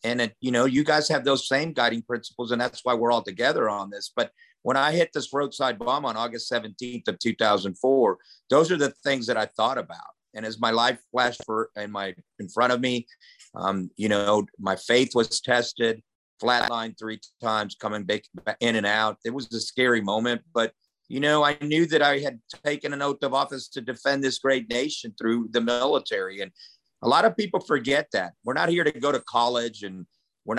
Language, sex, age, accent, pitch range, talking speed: English, male, 50-69, American, 110-135 Hz, 205 wpm